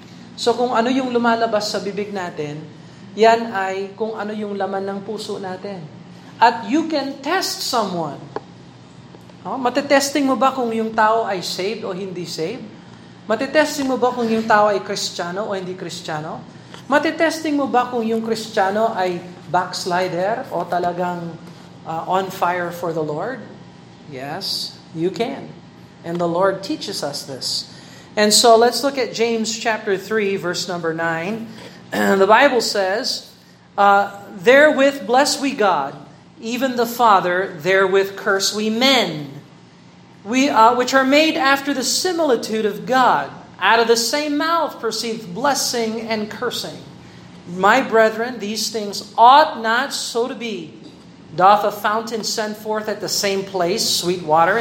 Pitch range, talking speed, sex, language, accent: 185-240 Hz, 150 wpm, male, Filipino, native